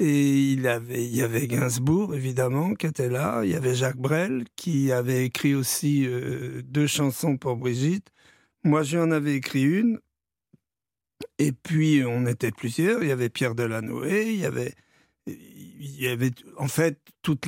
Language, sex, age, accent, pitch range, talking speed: French, male, 60-79, French, 140-175 Hz, 160 wpm